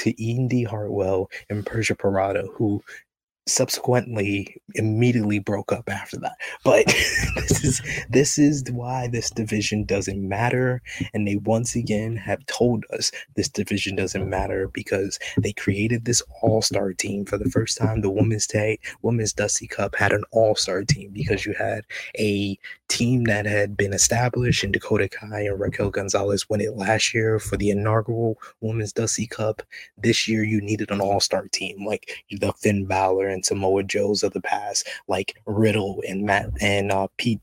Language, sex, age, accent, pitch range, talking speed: English, male, 20-39, American, 100-115 Hz, 165 wpm